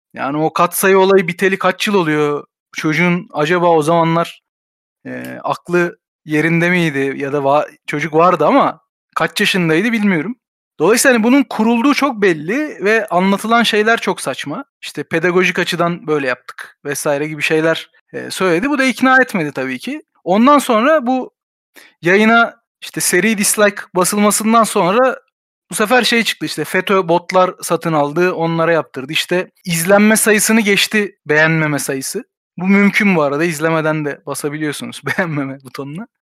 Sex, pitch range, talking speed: male, 165-215 Hz, 145 wpm